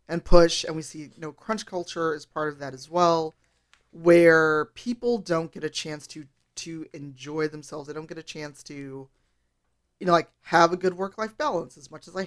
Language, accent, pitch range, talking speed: English, American, 150-185 Hz, 210 wpm